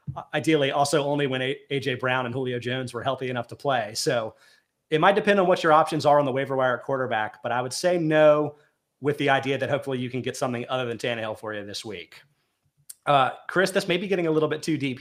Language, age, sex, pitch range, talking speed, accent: English, 30-49, male, 130-155 Hz, 250 wpm, American